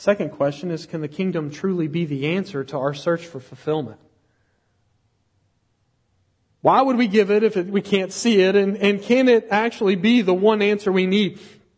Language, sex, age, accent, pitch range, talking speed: English, male, 40-59, American, 135-200 Hz, 185 wpm